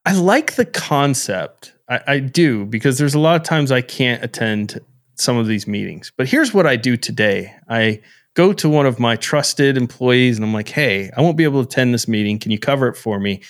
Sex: male